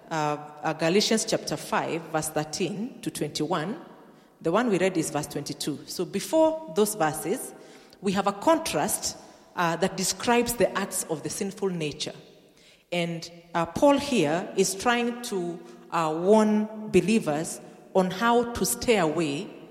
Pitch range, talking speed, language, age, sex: 155-210 Hz, 145 wpm, English, 40-59, female